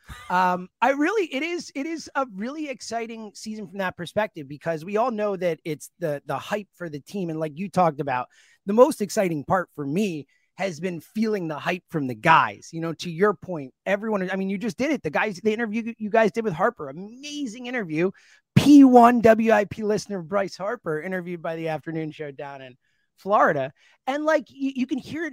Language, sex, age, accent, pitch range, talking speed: English, male, 30-49, American, 175-265 Hz, 210 wpm